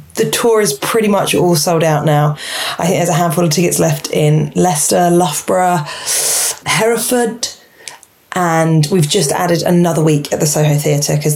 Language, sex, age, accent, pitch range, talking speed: English, female, 20-39, British, 150-175 Hz, 170 wpm